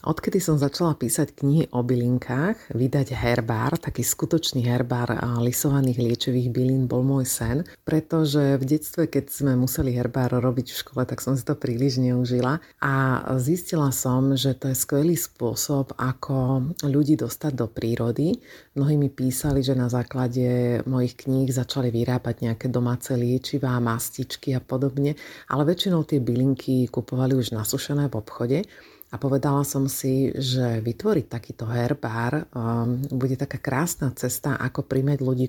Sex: female